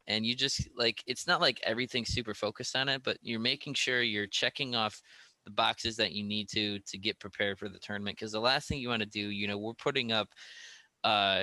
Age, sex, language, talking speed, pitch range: 20-39, male, English, 235 wpm, 95-110 Hz